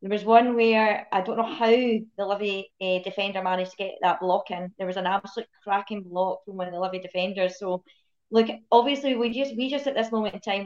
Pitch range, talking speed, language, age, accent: 200-230 Hz, 235 wpm, English, 20-39, British